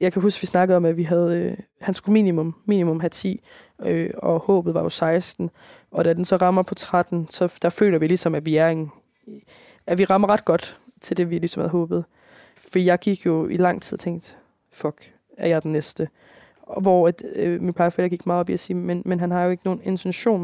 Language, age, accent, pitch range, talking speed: Danish, 20-39, native, 170-200 Hz, 240 wpm